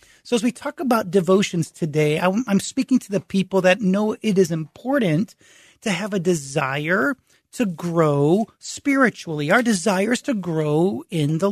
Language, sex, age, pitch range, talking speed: English, male, 30-49, 165-220 Hz, 155 wpm